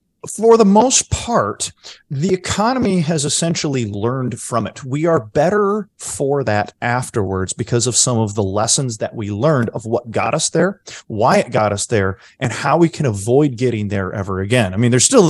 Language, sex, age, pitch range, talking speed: English, male, 30-49, 105-140 Hz, 190 wpm